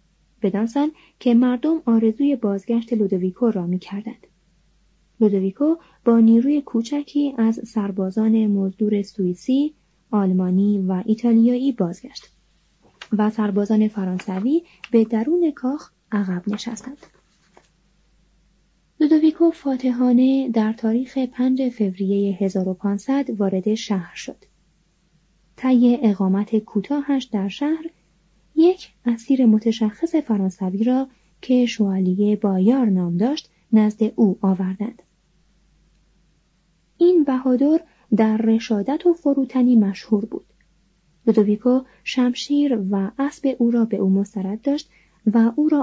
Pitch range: 195-260 Hz